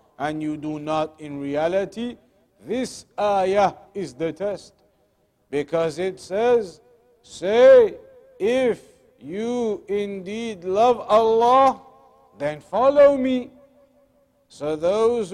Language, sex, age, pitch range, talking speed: English, male, 50-69, 185-225 Hz, 100 wpm